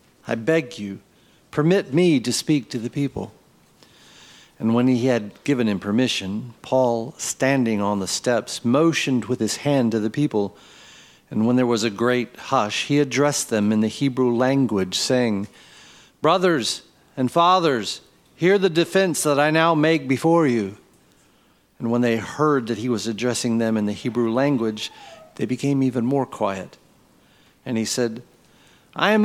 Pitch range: 120-165 Hz